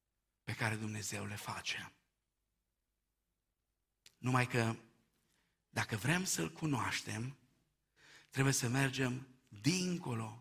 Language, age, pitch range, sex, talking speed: Romanian, 50-69, 115-160 Hz, male, 85 wpm